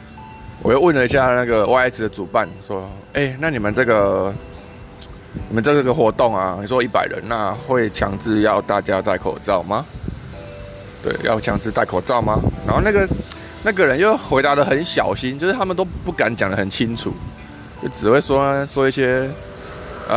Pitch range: 105-140 Hz